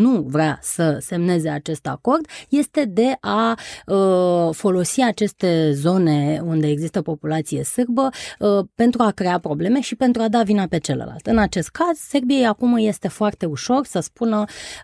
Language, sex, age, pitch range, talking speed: Romanian, female, 20-39, 155-205 Hz, 160 wpm